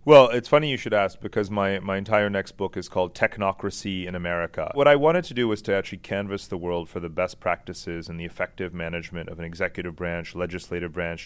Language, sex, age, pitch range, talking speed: English, male, 30-49, 90-110 Hz, 225 wpm